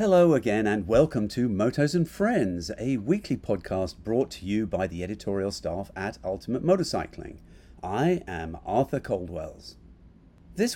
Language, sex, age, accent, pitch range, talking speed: English, male, 40-59, British, 90-130 Hz, 145 wpm